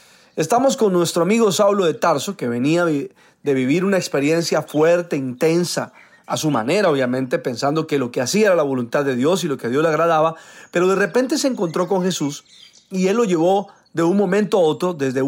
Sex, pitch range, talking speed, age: male, 155-205 Hz, 205 wpm, 40-59